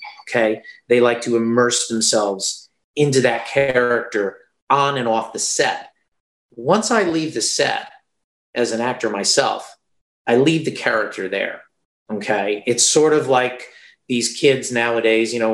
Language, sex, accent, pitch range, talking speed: English, male, American, 105-130 Hz, 145 wpm